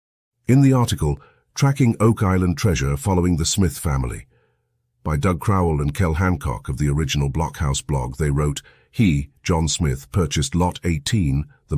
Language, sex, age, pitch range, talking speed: English, male, 50-69, 70-95 Hz, 160 wpm